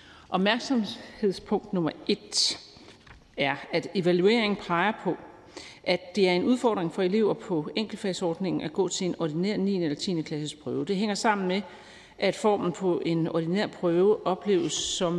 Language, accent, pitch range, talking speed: Danish, native, 170-205 Hz, 150 wpm